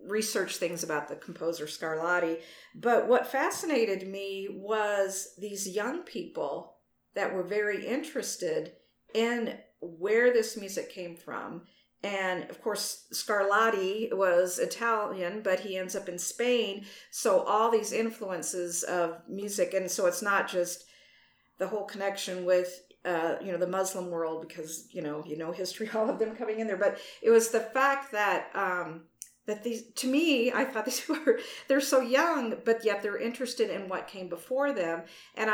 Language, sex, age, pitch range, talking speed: English, female, 50-69, 180-235 Hz, 165 wpm